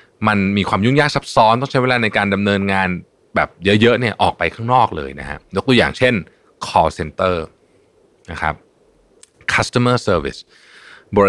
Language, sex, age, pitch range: Thai, male, 20-39, 90-125 Hz